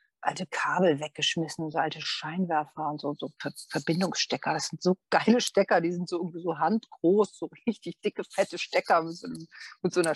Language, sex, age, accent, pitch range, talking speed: German, female, 40-59, German, 155-185 Hz, 170 wpm